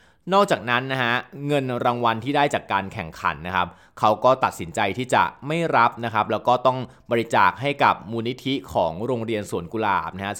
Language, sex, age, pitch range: Thai, male, 20-39, 100-130 Hz